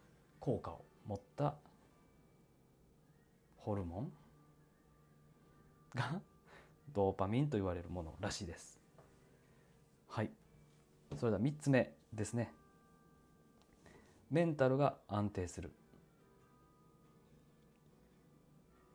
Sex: male